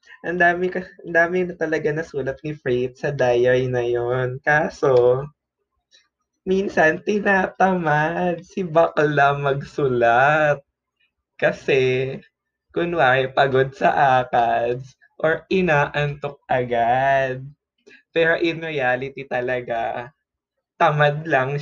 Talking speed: 95 wpm